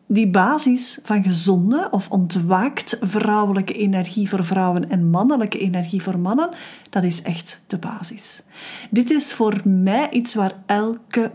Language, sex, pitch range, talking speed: Dutch, female, 190-235 Hz, 145 wpm